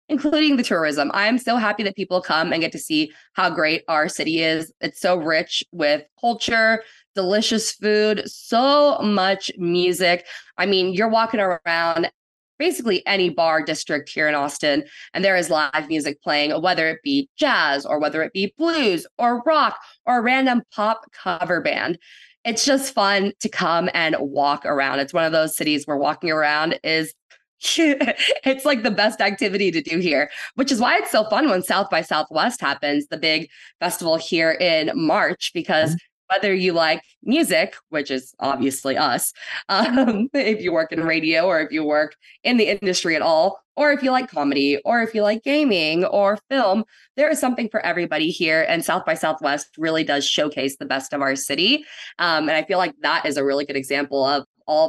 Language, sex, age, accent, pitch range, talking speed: English, female, 20-39, American, 155-240 Hz, 190 wpm